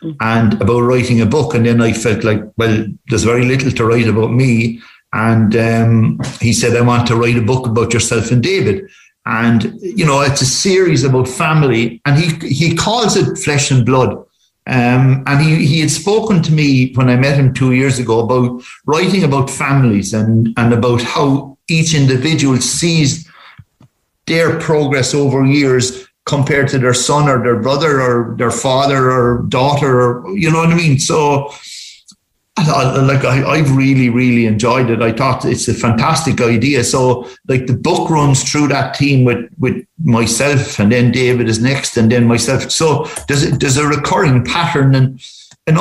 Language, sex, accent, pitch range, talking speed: English, male, Irish, 120-145 Hz, 185 wpm